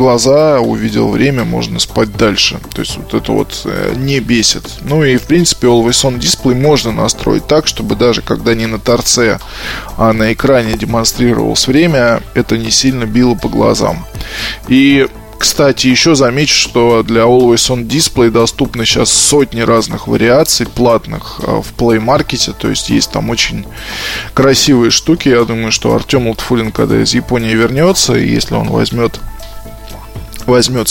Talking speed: 155 wpm